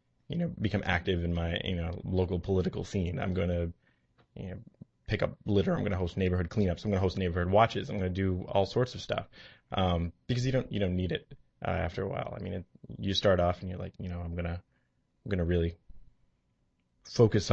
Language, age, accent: English, 20-39, American